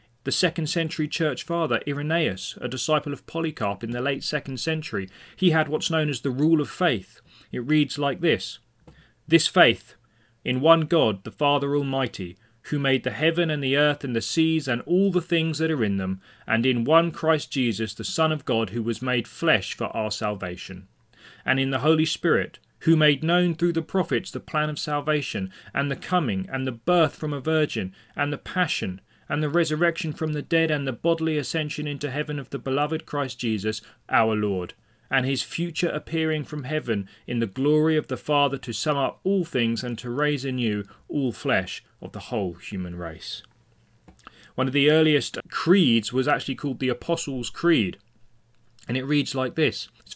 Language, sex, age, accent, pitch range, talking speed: English, male, 30-49, British, 120-160 Hz, 195 wpm